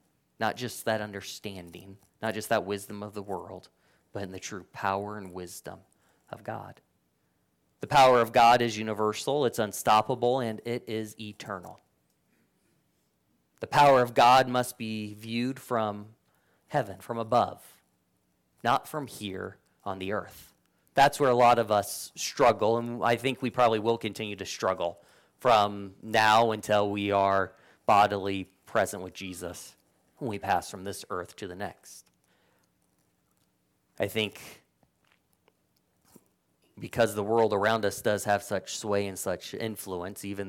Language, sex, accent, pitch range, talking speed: English, male, American, 95-115 Hz, 145 wpm